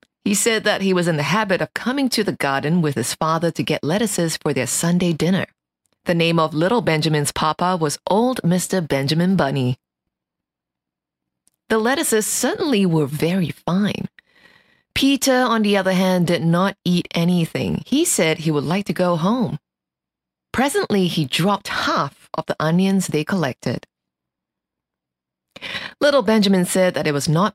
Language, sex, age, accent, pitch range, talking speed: English, female, 30-49, American, 155-210 Hz, 160 wpm